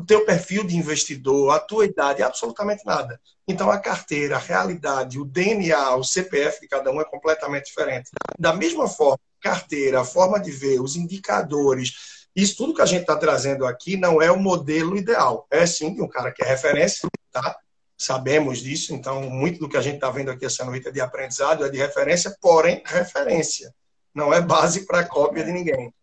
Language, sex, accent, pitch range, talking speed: Portuguese, male, Brazilian, 135-180 Hz, 195 wpm